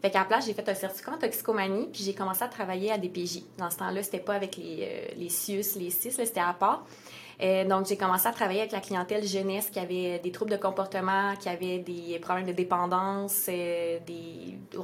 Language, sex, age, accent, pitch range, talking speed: French, female, 20-39, Canadian, 185-215 Hz, 225 wpm